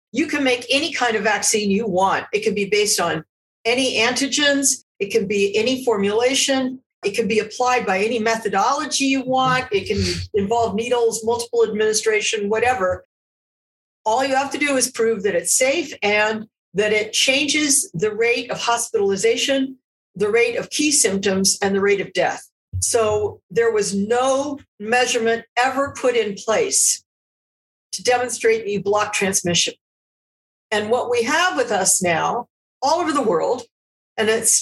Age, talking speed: 50-69, 160 wpm